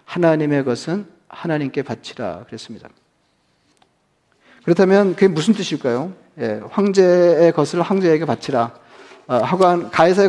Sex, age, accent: male, 40-59, native